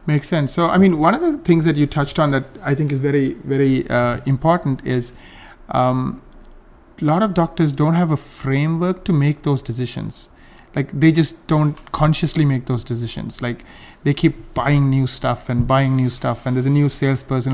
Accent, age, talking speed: Indian, 30-49, 200 wpm